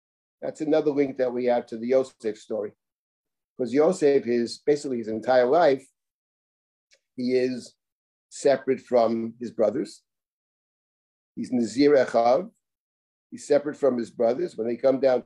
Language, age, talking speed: English, 50-69, 140 wpm